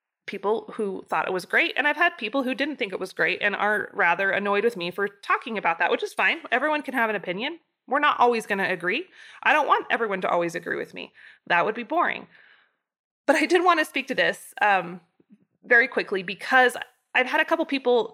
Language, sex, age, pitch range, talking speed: English, female, 20-39, 190-240 Hz, 230 wpm